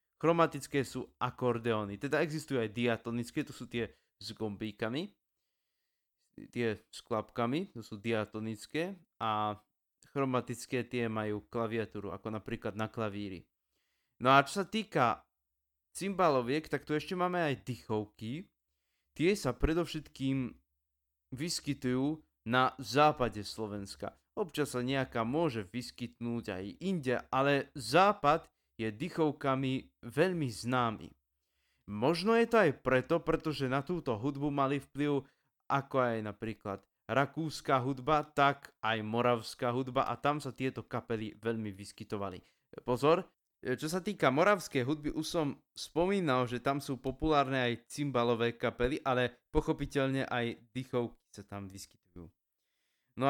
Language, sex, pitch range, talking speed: Slovak, male, 110-145 Hz, 125 wpm